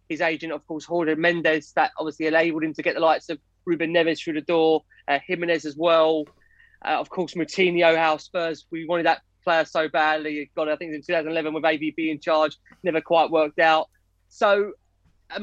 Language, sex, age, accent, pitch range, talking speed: English, male, 20-39, British, 160-190 Hz, 200 wpm